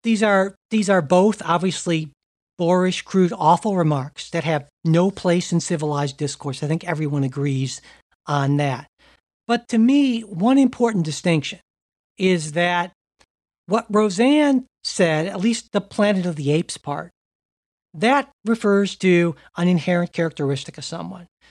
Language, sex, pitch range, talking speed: English, male, 165-220 Hz, 140 wpm